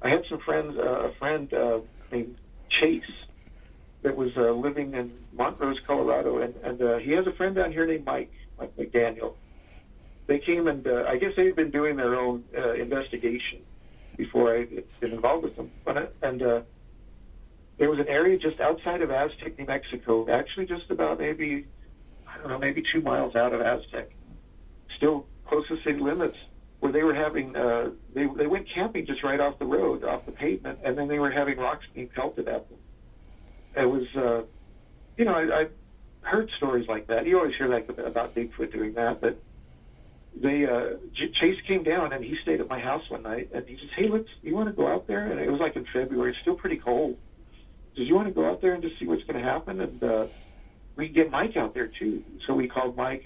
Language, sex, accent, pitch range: English, male, American, 115-150 Hz